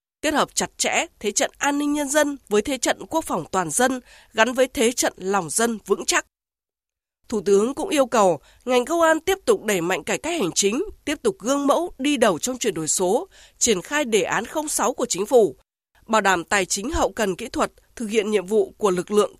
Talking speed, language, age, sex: 230 wpm, Vietnamese, 20-39, female